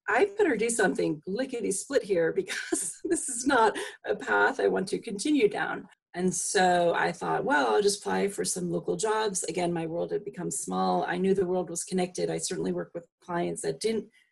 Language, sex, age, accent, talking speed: English, female, 40-59, American, 205 wpm